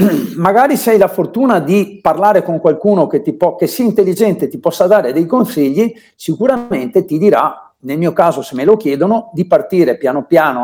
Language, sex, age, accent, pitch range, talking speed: Italian, male, 50-69, native, 175-230 Hz, 195 wpm